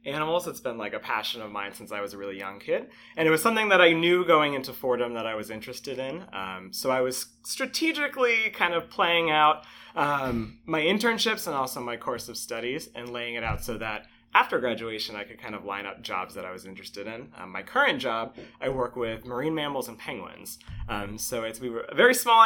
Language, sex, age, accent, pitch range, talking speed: English, male, 30-49, American, 110-165 Hz, 230 wpm